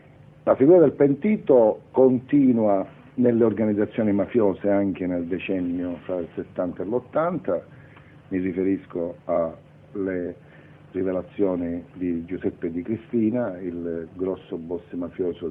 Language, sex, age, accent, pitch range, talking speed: Italian, male, 50-69, native, 90-125 Hz, 110 wpm